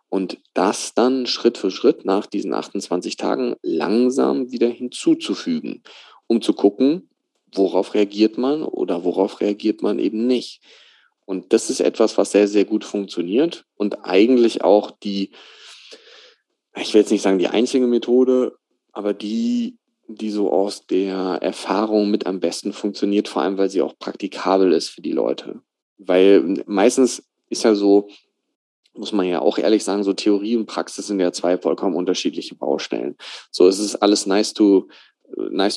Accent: German